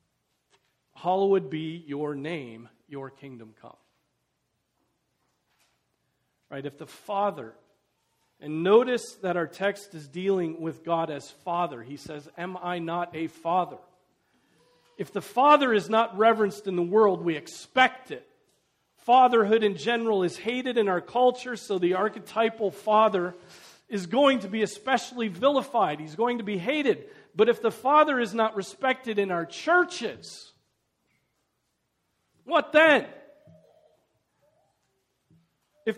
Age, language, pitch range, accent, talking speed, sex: 40-59, English, 170-260 Hz, American, 130 wpm, male